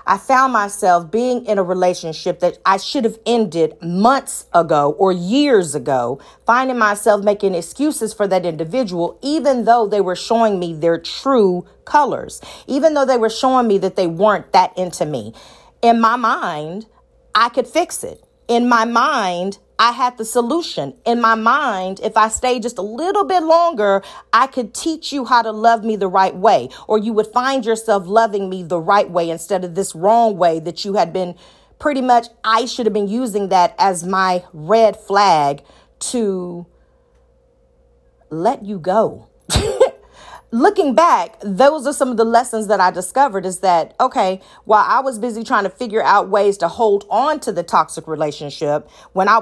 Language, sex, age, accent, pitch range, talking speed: English, female, 40-59, American, 175-235 Hz, 180 wpm